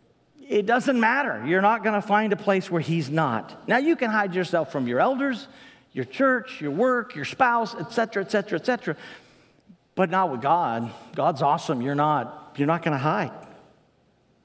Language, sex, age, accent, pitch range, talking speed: English, male, 50-69, American, 150-235 Hz, 180 wpm